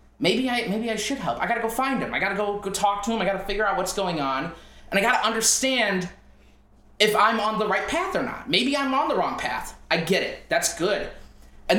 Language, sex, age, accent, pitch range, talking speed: English, male, 20-39, American, 160-230 Hz, 270 wpm